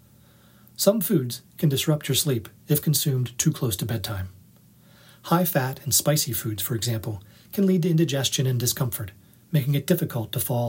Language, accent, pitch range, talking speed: English, American, 120-170 Hz, 165 wpm